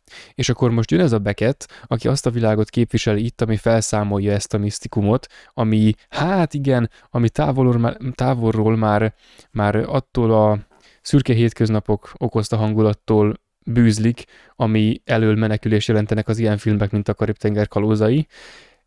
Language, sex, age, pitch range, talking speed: Hungarian, male, 10-29, 105-115 Hz, 140 wpm